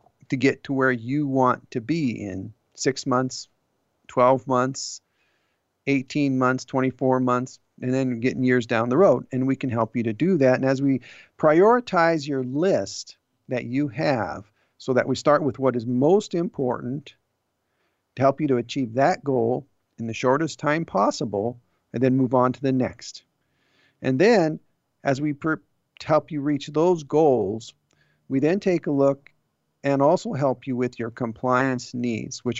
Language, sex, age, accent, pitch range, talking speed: English, male, 50-69, American, 120-145 Hz, 170 wpm